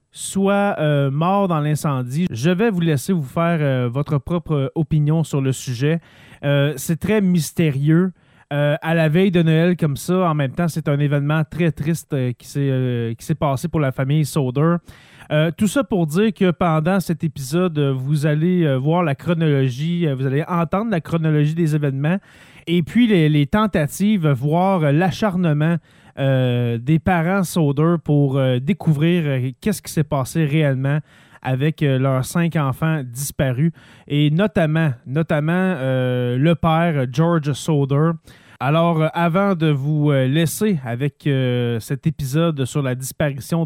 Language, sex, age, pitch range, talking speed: French, male, 30-49, 140-170 Hz, 160 wpm